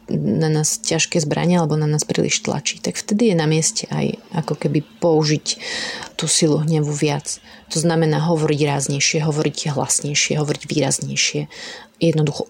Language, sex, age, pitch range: Slovak, female, 30-49, 150-170 Hz